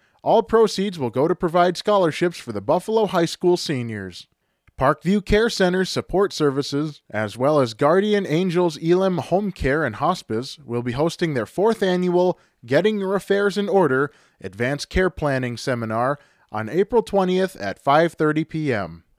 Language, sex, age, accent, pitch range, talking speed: English, male, 20-39, American, 125-185 Hz, 155 wpm